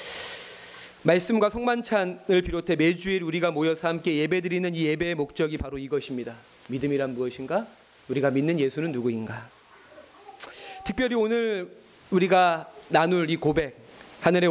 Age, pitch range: 30-49, 150-210 Hz